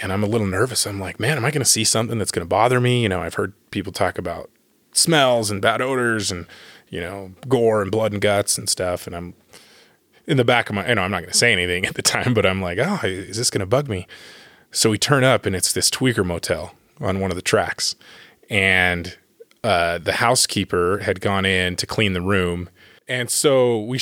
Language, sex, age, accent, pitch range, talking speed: English, male, 20-39, American, 95-120 Hz, 240 wpm